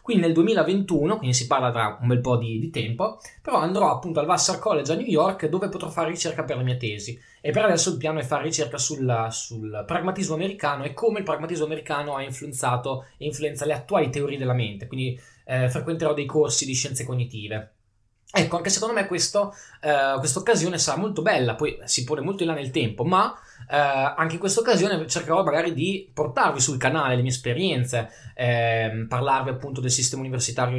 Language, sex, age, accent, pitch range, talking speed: Italian, male, 10-29, native, 125-180 Hz, 200 wpm